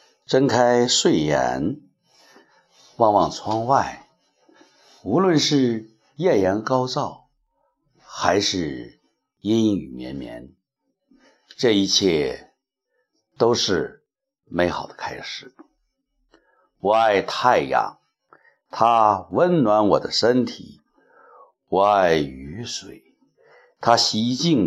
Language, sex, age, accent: Chinese, male, 60-79, native